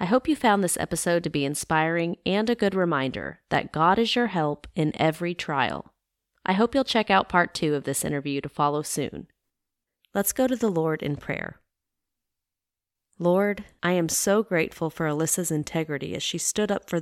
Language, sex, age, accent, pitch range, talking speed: English, female, 30-49, American, 155-200 Hz, 190 wpm